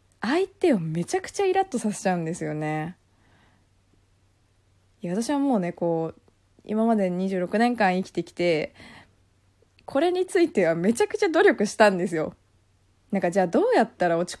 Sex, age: female, 20-39